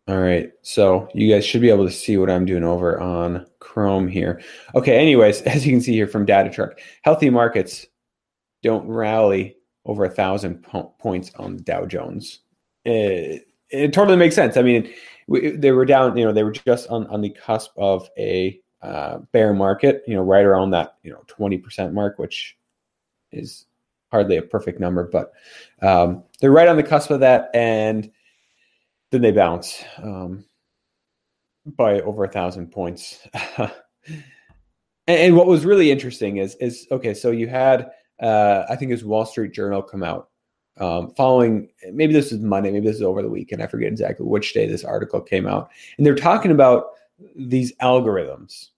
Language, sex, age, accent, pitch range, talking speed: English, male, 30-49, American, 95-130 Hz, 180 wpm